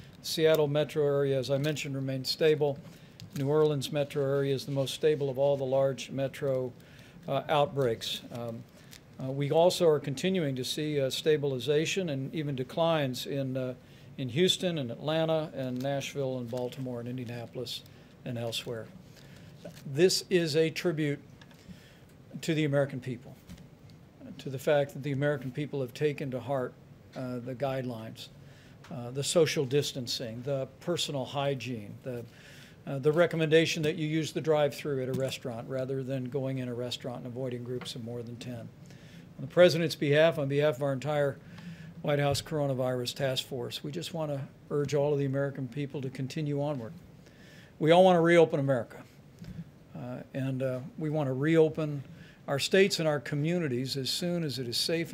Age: 60-79